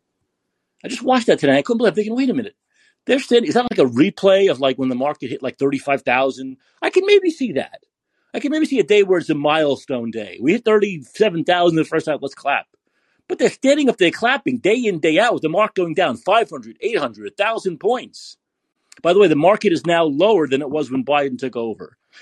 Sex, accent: male, American